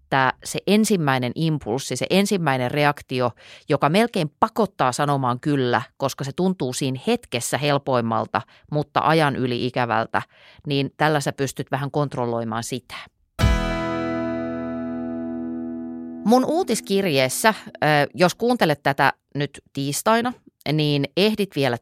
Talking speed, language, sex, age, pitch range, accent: 105 wpm, Finnish, female, 30-49, 125-175 Hz, native